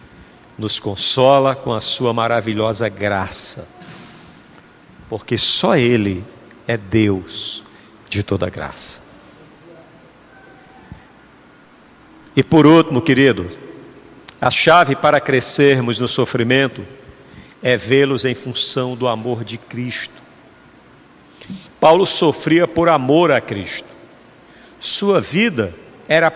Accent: Brazilian